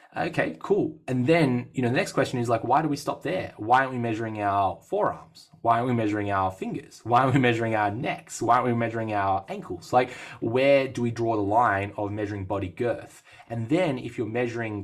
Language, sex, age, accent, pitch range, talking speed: English, male, 20-39, Australian, 100-125 Hz, 230 wpm